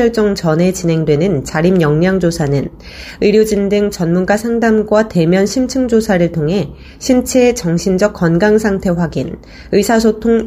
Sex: female